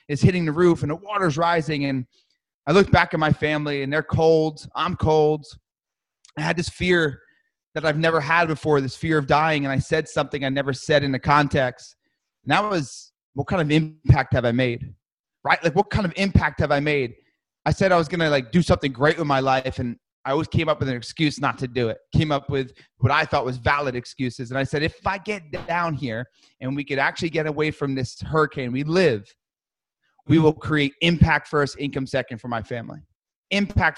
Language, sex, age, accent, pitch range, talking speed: English, male, 30-49, American, 135-160 Hz, 225 wpm